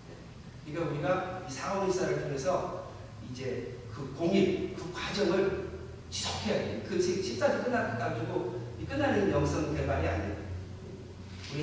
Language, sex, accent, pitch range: Korean, male, native, 120-185 Hz